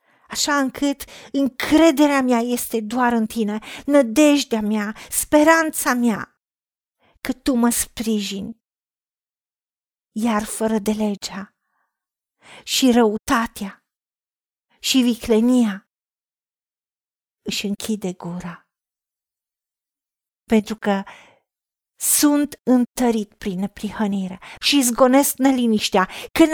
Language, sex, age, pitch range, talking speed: Romanian, female, 40-59, 210-280 Hz, 85 wpm